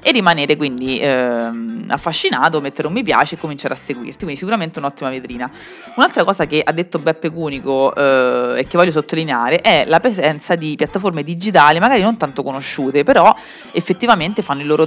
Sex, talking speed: female, 180 wpm